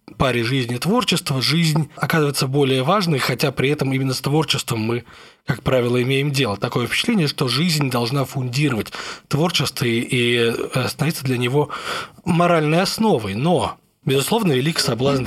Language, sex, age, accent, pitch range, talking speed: Russian, male, 20-39, native, 120-150 Hz, 135 wpm